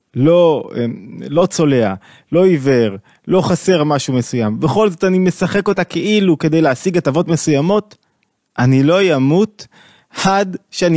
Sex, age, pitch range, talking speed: male, 20-39, 125-175 Hz, 130 wpm